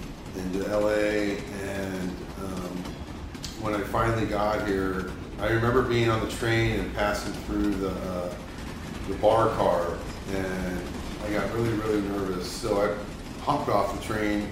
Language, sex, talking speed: English, male, 145 wpm